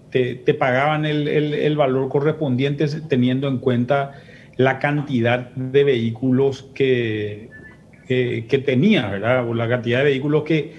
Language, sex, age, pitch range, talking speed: Spanish, male, 40-59, 125-155 Hz, 145 wpm